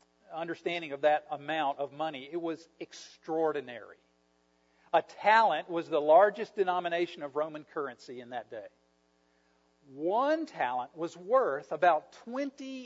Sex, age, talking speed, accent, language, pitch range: male, 50-69, 125 wpm, American, English, 115-195 Hz